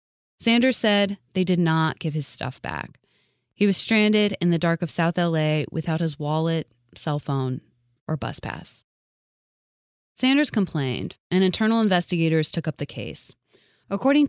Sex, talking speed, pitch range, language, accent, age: female, 150 wpm, 160-205 Hz, English, American, 20-39